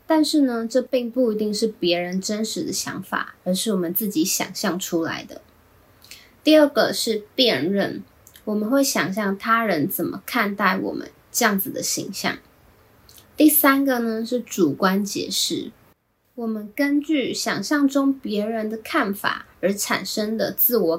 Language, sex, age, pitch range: Chinese, female, 20-39, 190-260 Hz